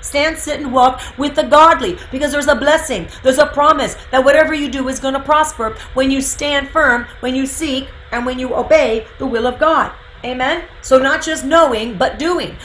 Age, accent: 40-59, American